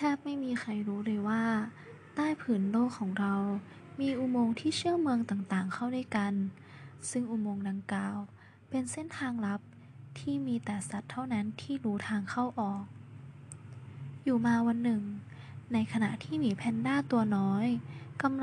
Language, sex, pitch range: Thai, female, 200-245 Hz